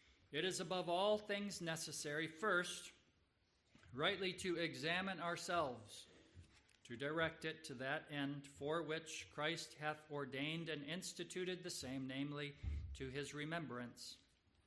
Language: English